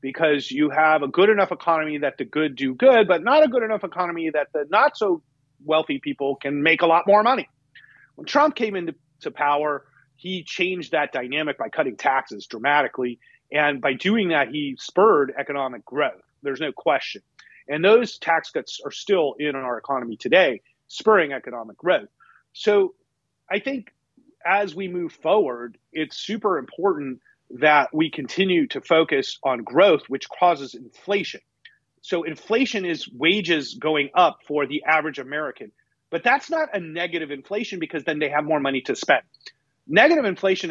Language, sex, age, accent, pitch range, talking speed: English, male, 40-59, American, 145-200 Hz, 165 wpm